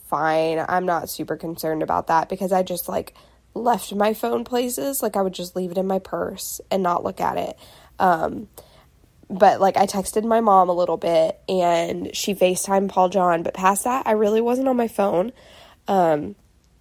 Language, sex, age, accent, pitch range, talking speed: English, female, 10-29, American, 175-225 Hz, 195 wpm